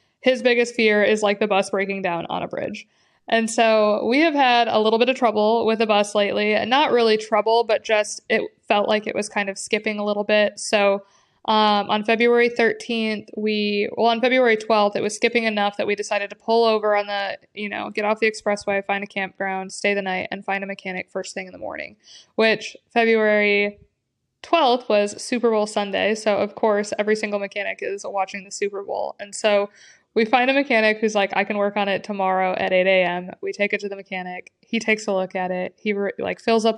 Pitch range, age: 200-225 Hz, 20-39